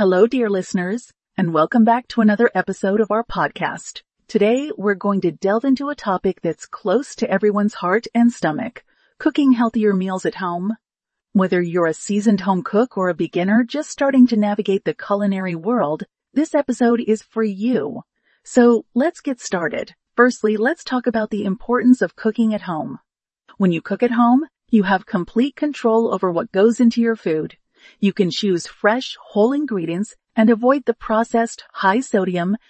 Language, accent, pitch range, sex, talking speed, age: English, American, 190-235 Hz, female, 170 wpm, 40-59